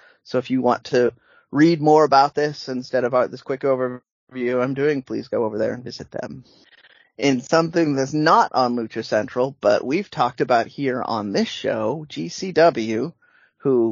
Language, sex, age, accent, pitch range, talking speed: English, male, 30-49, American, 120-150 Hz, 175 wpm